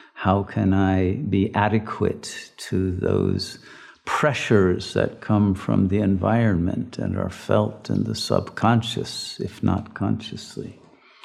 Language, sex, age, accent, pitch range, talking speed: English, male, 50-69, American, 95-110 Hz, 115 wpm